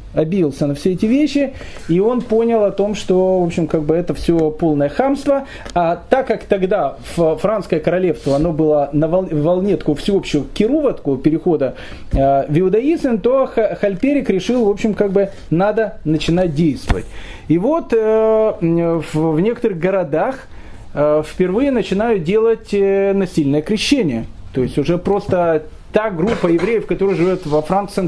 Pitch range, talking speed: 160-230 Hz, 135 wpm